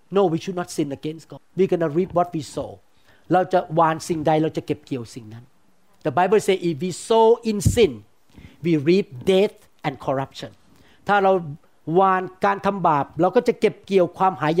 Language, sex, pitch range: Thai, male, 140-195 Hz